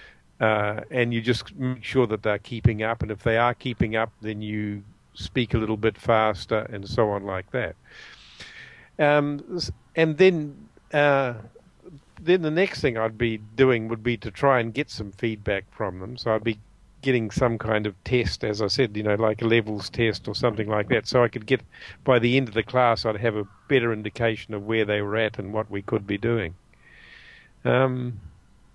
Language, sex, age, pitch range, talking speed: English, male, 50-69, 105-125 Hz, 205 wpm